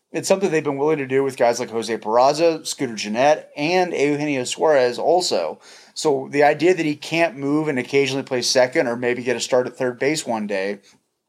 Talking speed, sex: 205 wpm, male